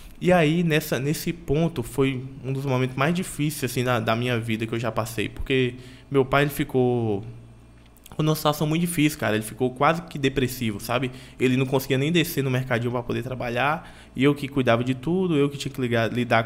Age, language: 20-39, Portuguese